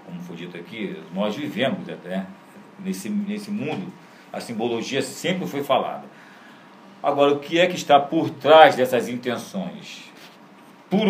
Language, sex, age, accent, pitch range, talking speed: Portuguese, male, 40-59, Brazilian, 100-150 Hz, 140 wpm